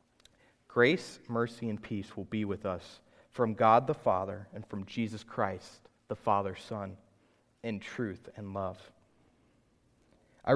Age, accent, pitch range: 30-49, American, 105-120 Hz